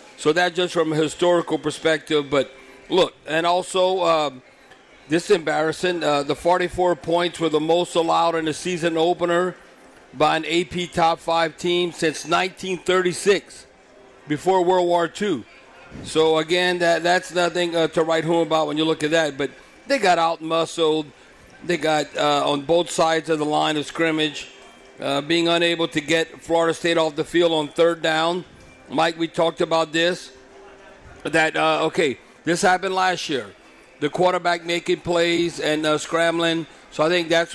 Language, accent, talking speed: English, American, 170 wpm